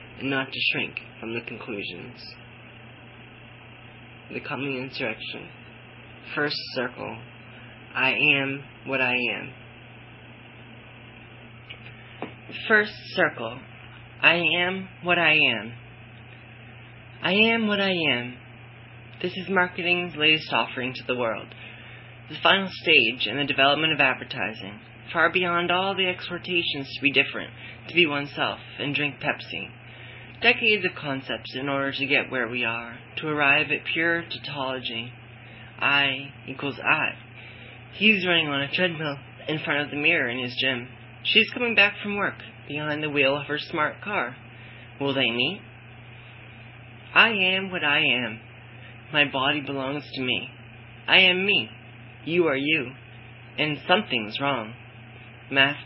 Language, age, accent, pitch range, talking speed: English, 30-49, American, 120-150 Hz, 135 wpm